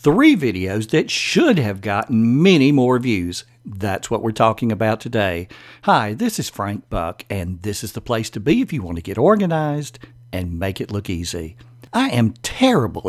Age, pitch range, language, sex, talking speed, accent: 60-79, 105-150 Hz, English, male, 190 wpm, American